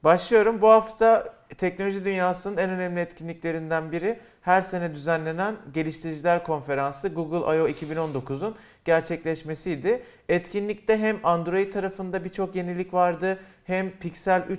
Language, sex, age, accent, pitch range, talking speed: Turkish, male, 40-59, native, 160-195 Hz, 110 wpm